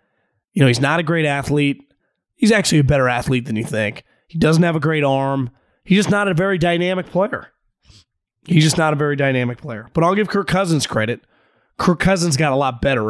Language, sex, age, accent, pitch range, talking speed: English, male, 30-49, American, 130-165 Hz, 215 wpm